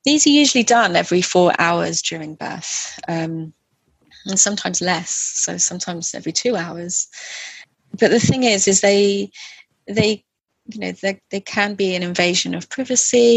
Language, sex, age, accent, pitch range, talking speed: English, female, 30-49, British, 175-205 Hz, 155 wpm